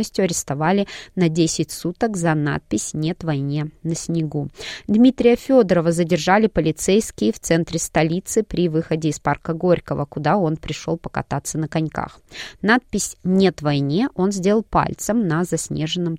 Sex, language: female, Russian